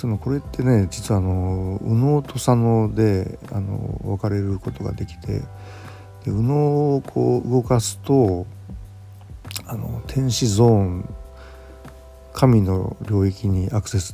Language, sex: Japanese, male